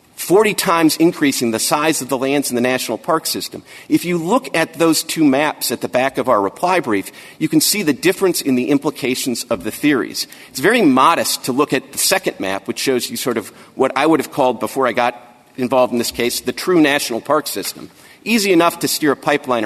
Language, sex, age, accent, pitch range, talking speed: English, male, 50-69, American, 125-170 Hz, 230 wpm